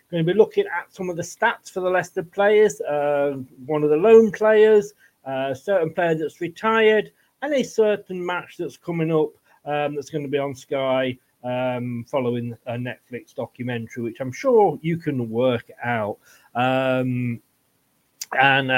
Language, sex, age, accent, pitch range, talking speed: English, male, 40-59, British, 130-185 Hz, 170 wpm